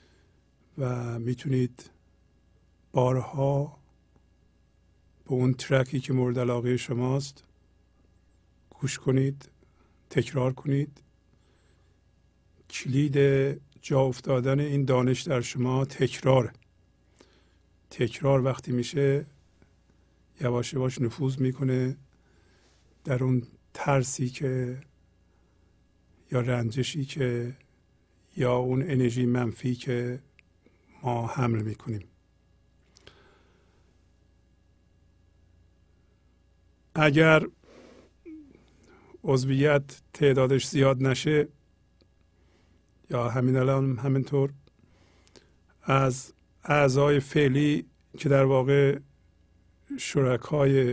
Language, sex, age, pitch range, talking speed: Persian, male, 50-69, 90-135 Hz, 70 wpm